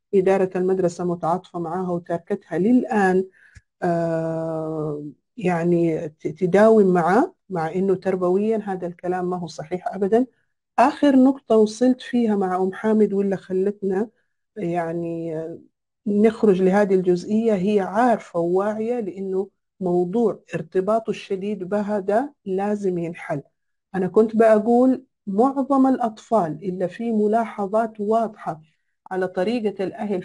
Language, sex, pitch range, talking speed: Arabic, female, 185-235 Hz, 105 wpm